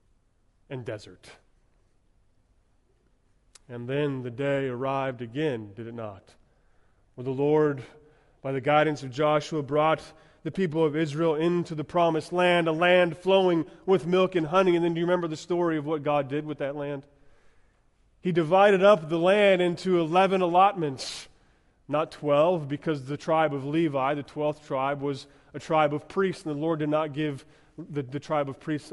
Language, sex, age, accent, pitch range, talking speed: English, male, 30-49, American, 140-190 Hz, 170 wpm